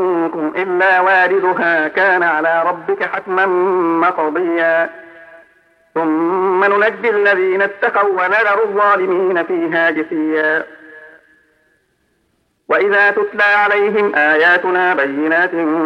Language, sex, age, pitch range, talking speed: Arabic, male, 50-69, 165-200 Hz, 75 wpm